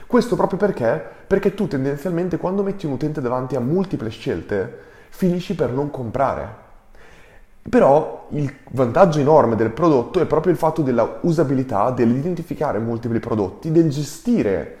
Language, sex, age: Italian, male, 20-39